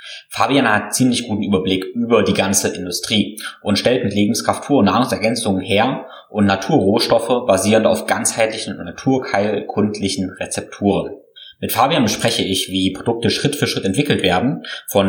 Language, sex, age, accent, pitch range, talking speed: German, male, 20-39, German, 95-115 Hz, 145 wpm